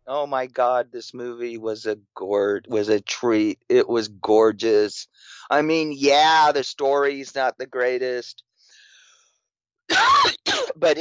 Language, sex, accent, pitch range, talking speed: English, male, American, 120-160 Hz, 125 wpm